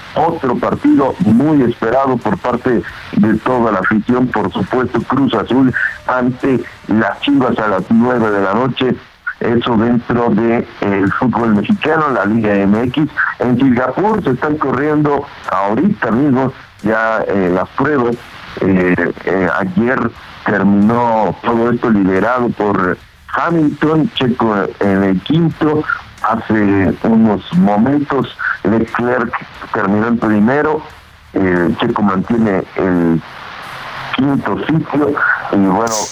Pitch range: 100-135 Hz